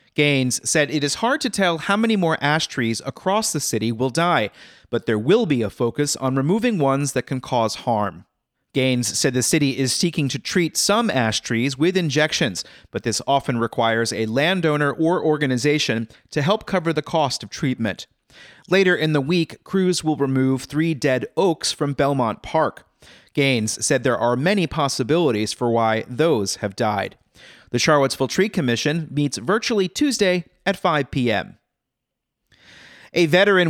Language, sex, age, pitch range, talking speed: English, male, 30-49, 120-165 Hz, 165 wpm